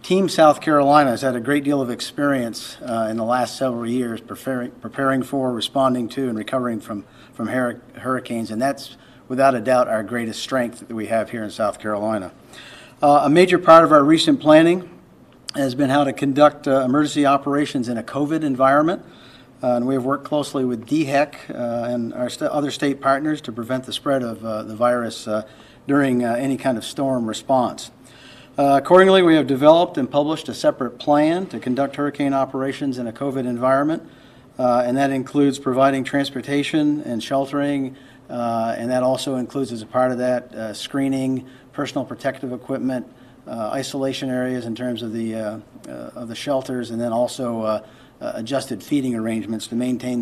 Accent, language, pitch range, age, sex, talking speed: American, English, 120-145 Hz, 50-69, male, 185 wpm